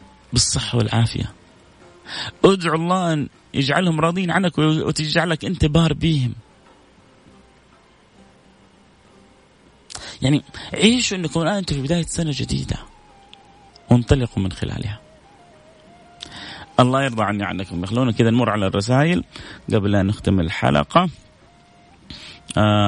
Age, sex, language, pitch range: 30-49, male, Arabic, 110-140 Hz